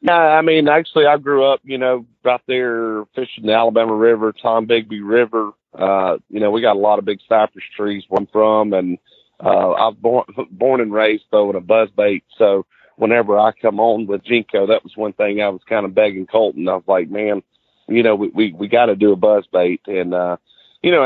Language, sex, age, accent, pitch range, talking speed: English, male, 40-59, American, 100-120 Hz, 230 wpm